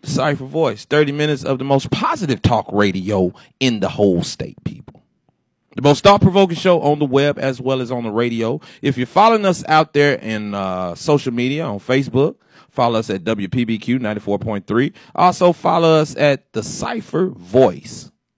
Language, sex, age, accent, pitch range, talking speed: English, male, 30-49, American, 105-145 Hz, 170 wpm